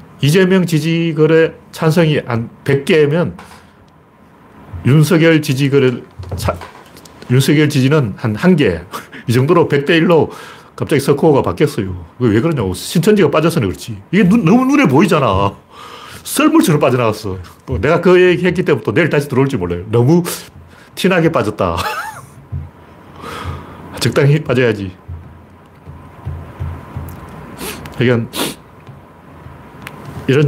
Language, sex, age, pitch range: Korean, male, 40-59, 110-155 Hz